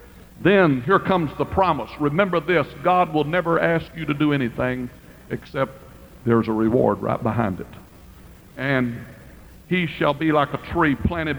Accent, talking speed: American, 160 wpm